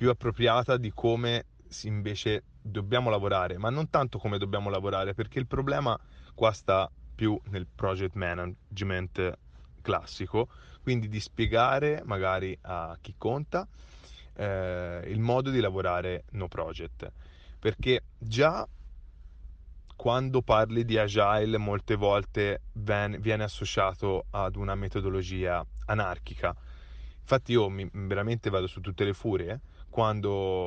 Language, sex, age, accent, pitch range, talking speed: Italian, male, 30-49, native, 90-115 Hz, 120 wpm